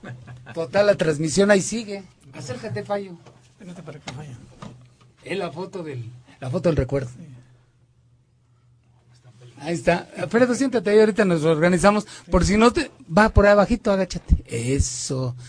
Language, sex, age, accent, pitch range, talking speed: Spanish, male, 40-59, Mexican, 135-185 Hz, 130 wpm